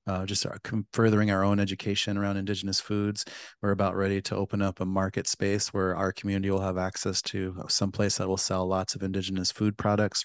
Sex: male